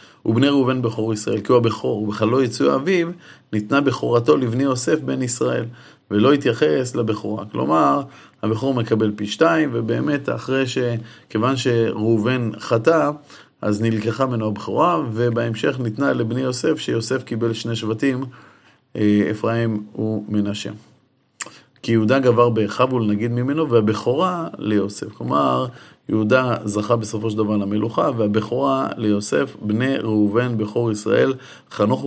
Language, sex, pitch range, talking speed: Hebrew, male, 110-130 Hz, 125 wpm